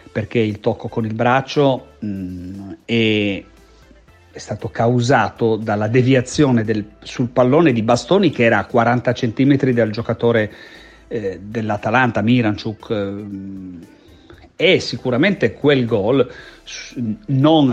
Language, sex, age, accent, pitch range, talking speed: Italian, male, 40-59, native, 105-120 Hz, 105 wpm